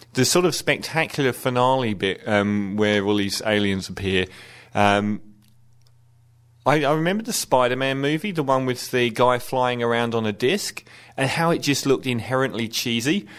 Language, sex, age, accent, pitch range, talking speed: English, male, 30-49, British, 110-145 Hz, 160 wpm